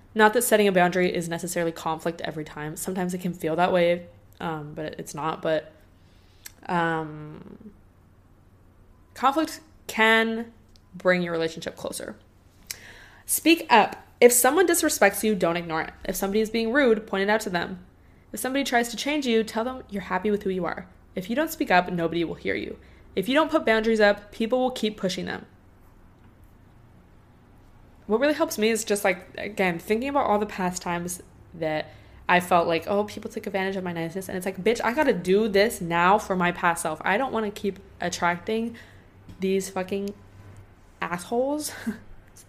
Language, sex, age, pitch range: English, female, 20-39, 165-220 Hz